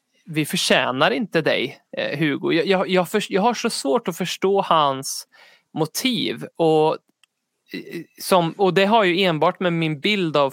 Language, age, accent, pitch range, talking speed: Swedish, 20-39, native, 150-190 Hz, 150 wpm